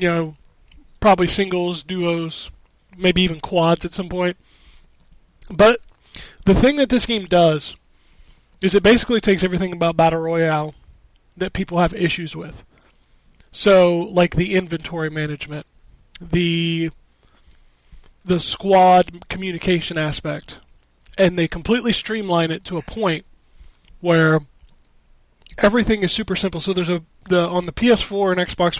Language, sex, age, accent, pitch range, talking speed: English, male, 30-49, American, 155-195 Hz, 130 wpm